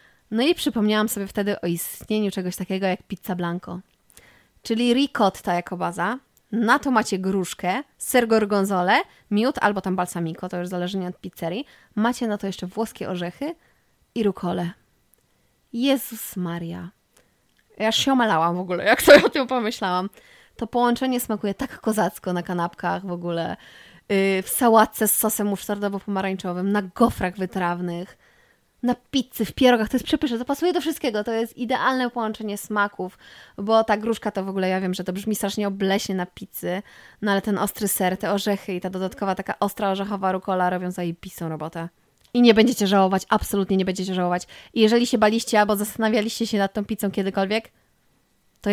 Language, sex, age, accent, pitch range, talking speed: Polish, female, 20-39, native, 185-225 Hz, 170 wpm